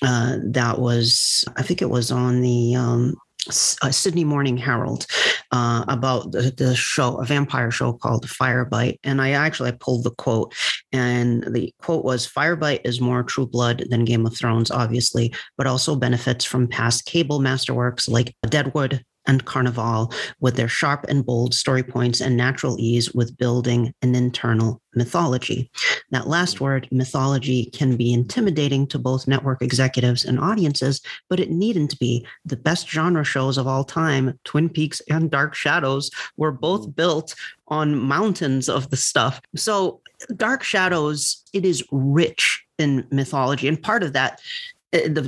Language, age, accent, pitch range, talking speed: English, 40-59, American, 125-150 Hz, 160 wpm